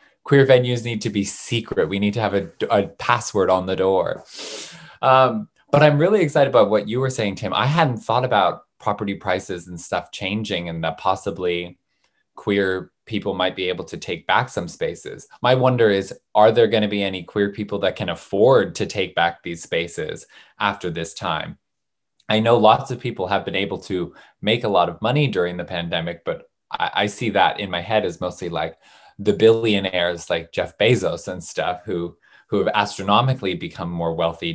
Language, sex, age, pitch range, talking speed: English, male, 20-39, 90-120 Hz, 195 wpm